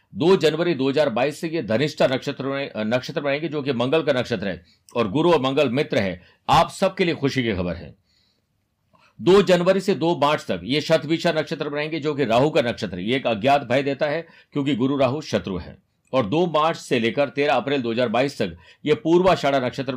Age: 50-69